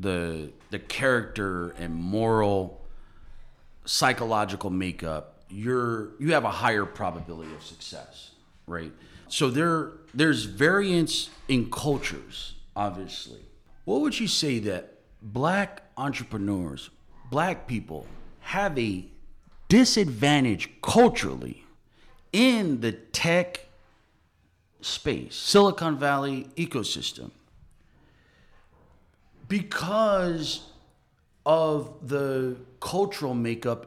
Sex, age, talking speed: male, 40-59, 85 wpm